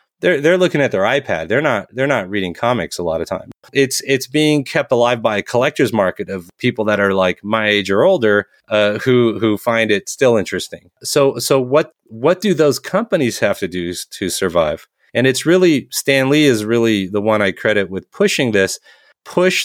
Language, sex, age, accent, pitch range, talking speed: English, male, 30-49, American, 105-135 Hz, 210 wpm